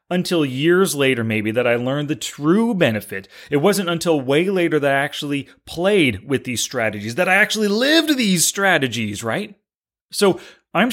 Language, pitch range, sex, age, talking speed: English, 130-195 Hz, male, 30-49, 170 wpm